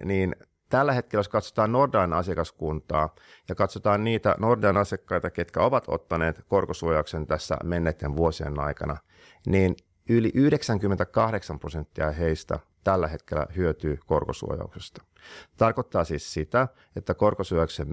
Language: Finnish